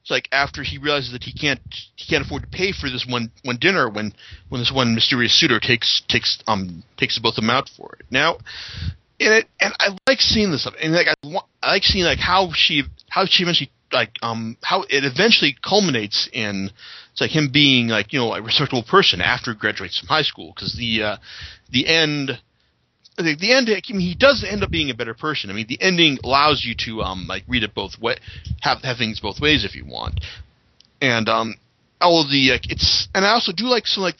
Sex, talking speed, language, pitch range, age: male, 230 wpm, English, 105-150 Hz, 40-59